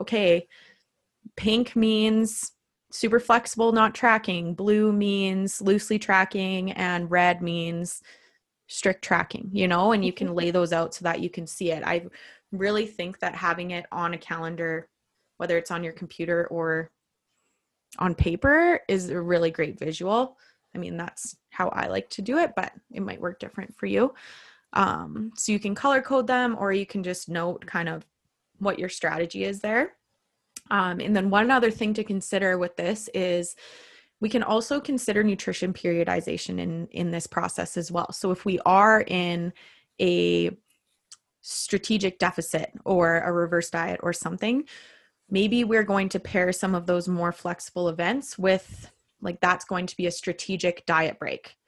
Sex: female